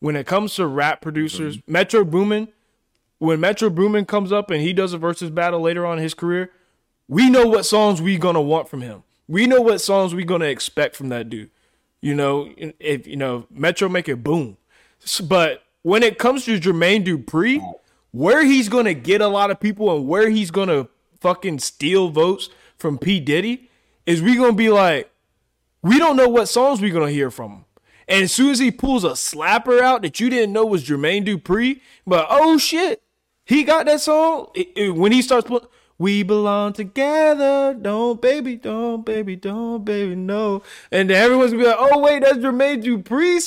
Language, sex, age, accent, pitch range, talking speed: English, male, 20-39, American, 160-235 Hz, 205 wpm